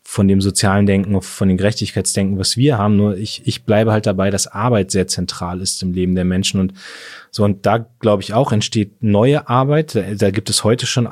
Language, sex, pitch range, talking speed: German, male, 95-115 Hz, 220 wpm